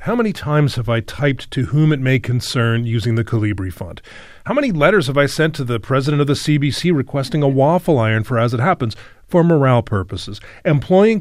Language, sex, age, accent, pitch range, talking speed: English, male, 40-59, American, 115-155 Hz, 210 wpm